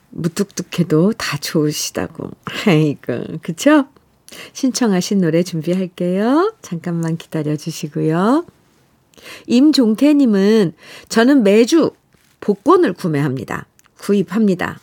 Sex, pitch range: female, 180-255 Hz